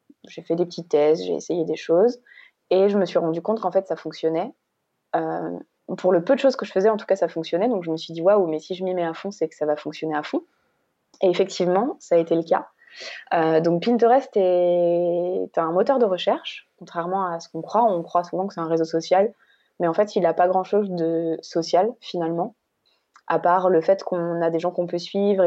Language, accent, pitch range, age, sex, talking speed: French, French, 165-195 Hz, 20-39, female, 245 wpm